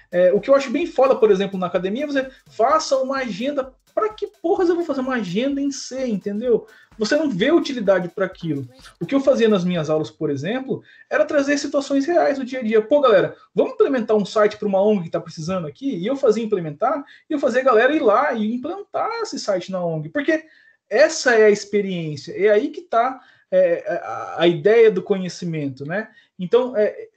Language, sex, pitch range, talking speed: Portuguese, male, 175-260 Hz, 215 wpm